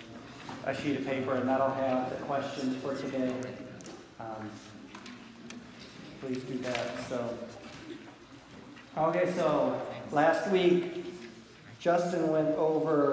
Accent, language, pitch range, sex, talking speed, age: American, English, 125-140 Hz, male, 105 wpm, 40-59